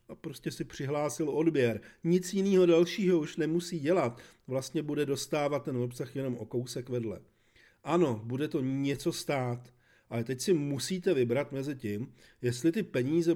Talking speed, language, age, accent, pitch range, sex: 155 wpm, Czech, 40-59, native, 115-150 Hz, male